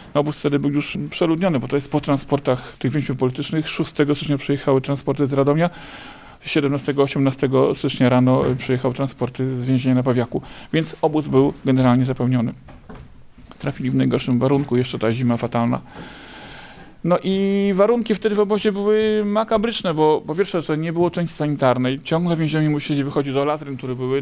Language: Polish